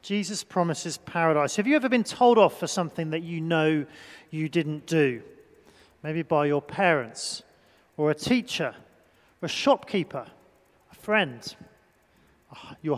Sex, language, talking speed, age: male, English, 140 wpm, 40-59